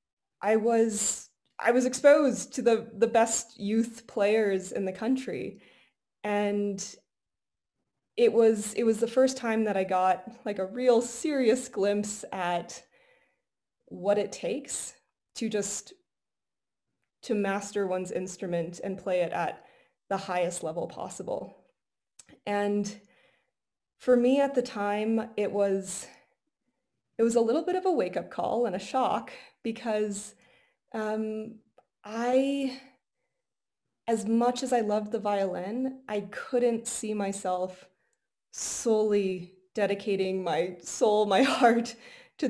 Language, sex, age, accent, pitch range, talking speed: English, female, 20-39, American, 200-245 Hz, 125 wpm